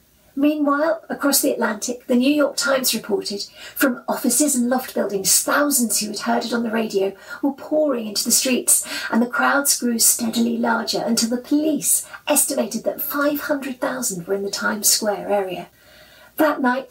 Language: English